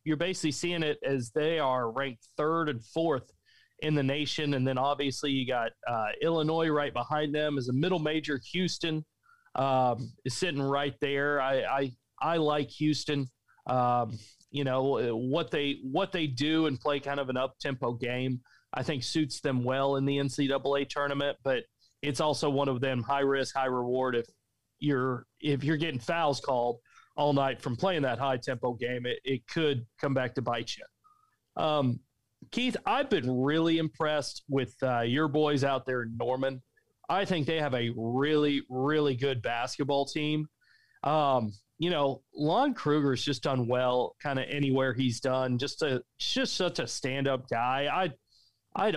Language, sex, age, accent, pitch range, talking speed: English, male, 40-59, American, 125-150 Hz, 170 wpm